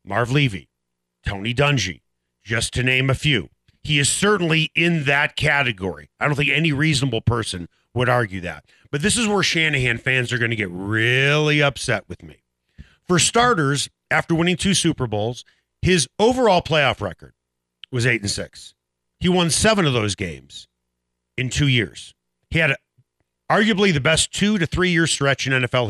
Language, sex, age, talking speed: English, male, 40-59, 165 wpm